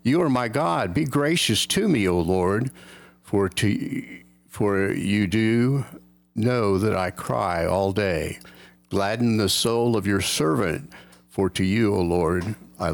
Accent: American